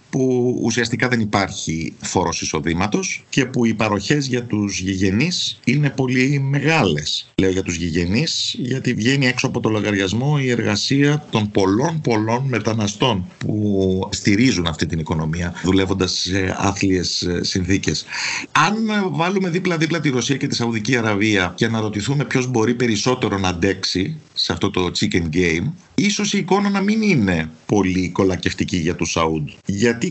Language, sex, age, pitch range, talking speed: Greek, male, 50-69, 95-125 Hz, 145 wpm